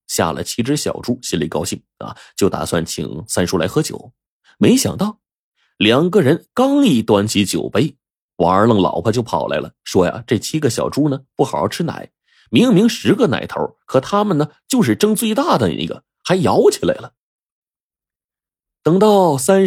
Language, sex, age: Chinese, male, 30-49